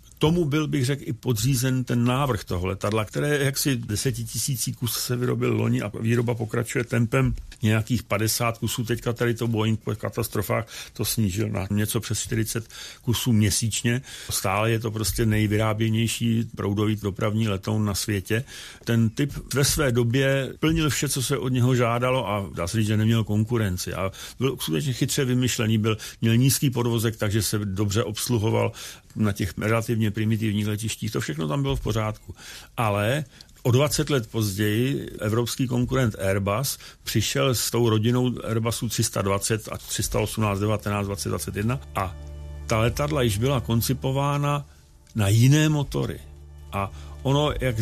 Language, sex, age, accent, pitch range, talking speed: Czech, male, 50-69, native, 105-125 Hz, 155 wpm